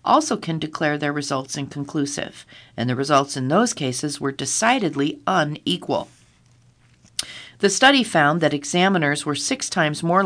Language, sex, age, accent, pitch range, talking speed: English, female, 40-59, American, 140-180 Hz, 140 wpm